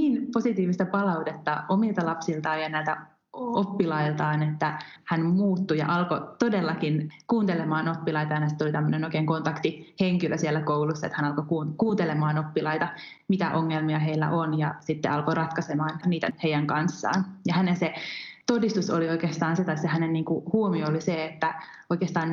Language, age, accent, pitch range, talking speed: Finnish, 20-39, native, 155-180 Hz, 150 wpm